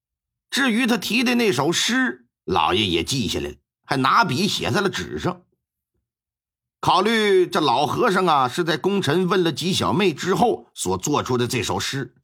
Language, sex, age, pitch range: Chinese, male, 50-69, 120-200 Hz